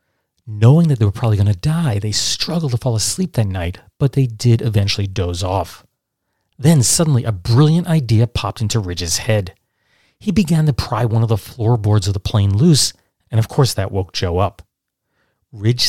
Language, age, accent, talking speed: English, 40-59, American, 190 wpm